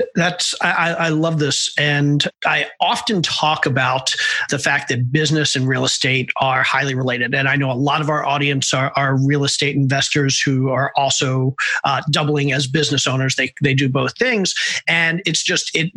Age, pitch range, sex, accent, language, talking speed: 40-59, 140-170 Hz, male, American, English, 190 wpm